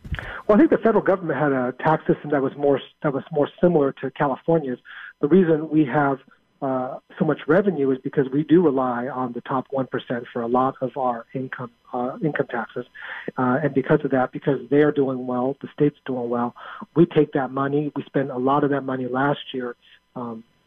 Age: 40-59